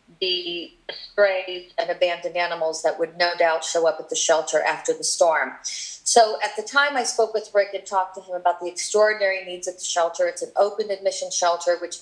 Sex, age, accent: female, 40-59, American